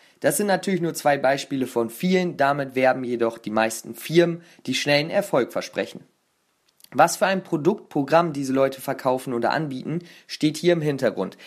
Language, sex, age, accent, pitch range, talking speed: German, male, 30-49, German, 130-170 Hz, 160 wpm